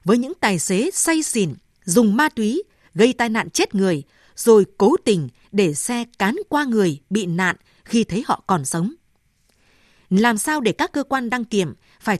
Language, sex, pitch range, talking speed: Vietnamese, female, 185-245 Hz, 185 wpm